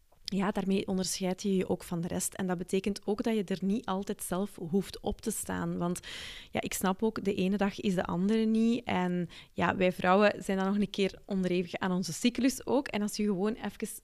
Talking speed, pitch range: 235 wpm, 175-215 Hz